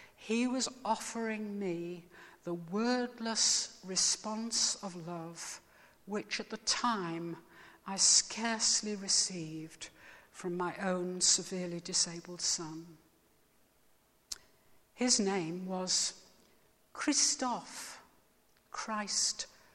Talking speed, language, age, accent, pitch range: 80 wpm, English, 60-79, British, 180-235 Hz